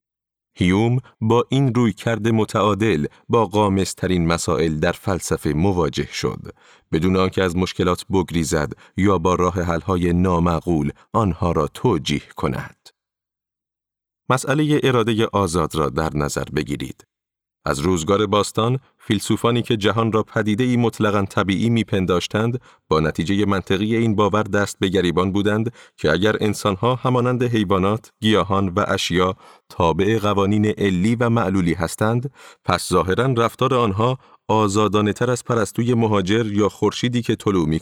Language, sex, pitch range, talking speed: Persian, male, 95-115 Hz, 135 wpm